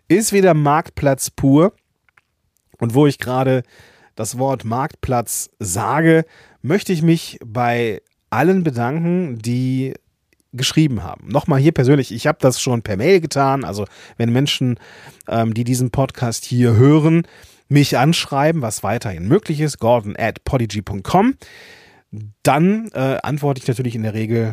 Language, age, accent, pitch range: German, 30-49, German, 110-160 Hz